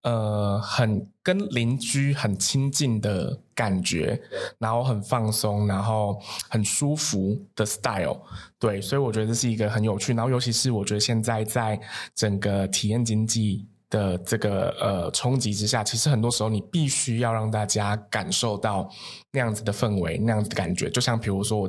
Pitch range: 105-125 Hz